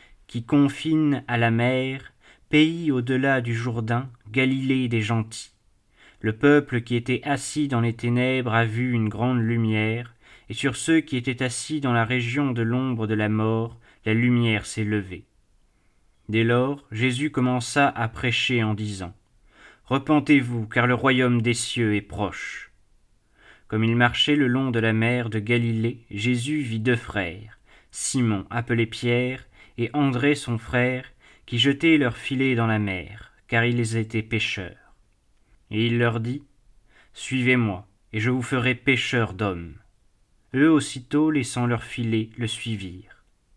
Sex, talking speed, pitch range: male, 150 wpm, 110-130 Hz